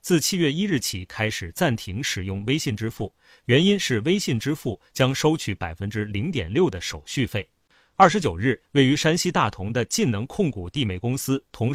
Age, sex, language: 30-49, male, Chinese